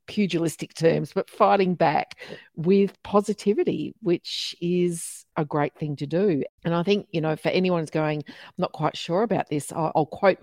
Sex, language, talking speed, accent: female, English, 185 wpm, Australian